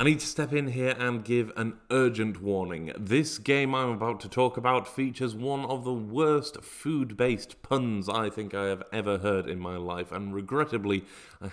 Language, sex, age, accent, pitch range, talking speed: English, male, 30-49, British, 100-150 Hz, 195 wpm